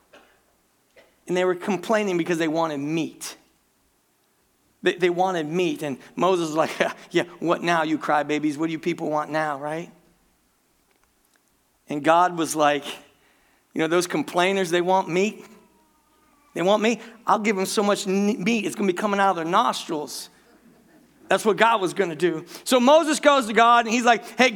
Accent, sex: American, male